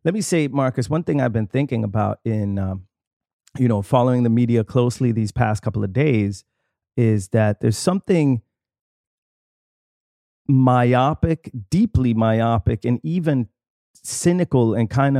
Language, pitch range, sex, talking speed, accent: English, 110-130 Hz, male, 140 wpm, American